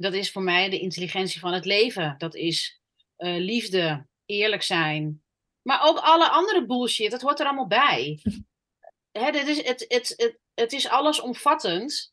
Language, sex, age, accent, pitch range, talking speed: Dutch, female, 30-49, Dutch, 175-265 Hz, 165 wpm